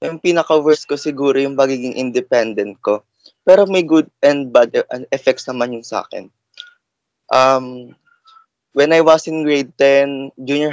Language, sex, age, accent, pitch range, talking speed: Filipino, male, 20-39, native, 130-155 Hz, 140 wpm